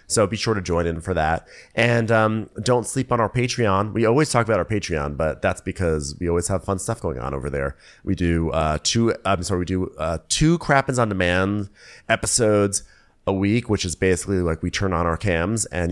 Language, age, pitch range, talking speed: English, 30-49, 85-110 Hz, 220 wpm